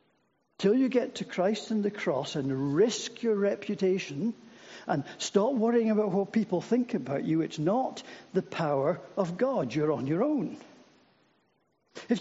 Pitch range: 145-205 Hz